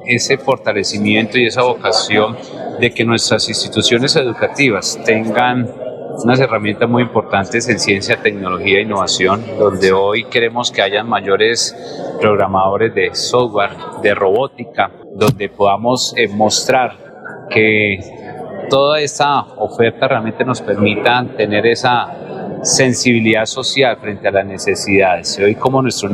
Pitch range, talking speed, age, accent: 105-125 Hz, 120 wpm, 30-49, Colombian